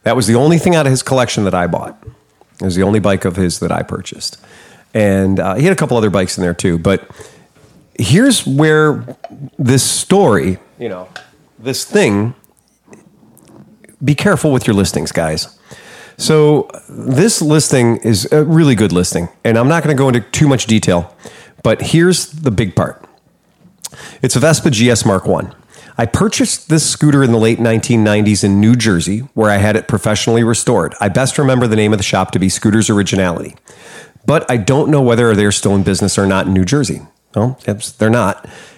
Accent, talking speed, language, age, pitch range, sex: American, 195 wpm, English, 40-59, 100-140 Hz, male